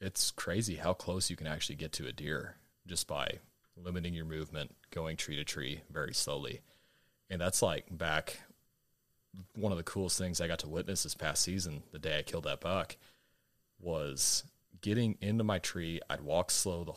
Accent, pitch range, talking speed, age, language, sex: American, 80-95 Hz, 185 wpm, 30-49, English, male